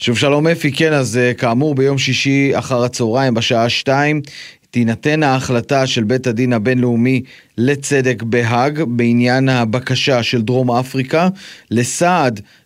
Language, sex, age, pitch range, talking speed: Hebrew, male, 30-49, 115-145 Hz, 125 wpm